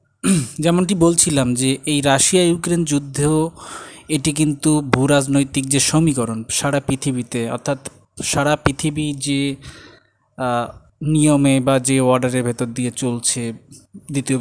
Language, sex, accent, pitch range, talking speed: Bengali, male, native, 130-160 Hz, 110 wpm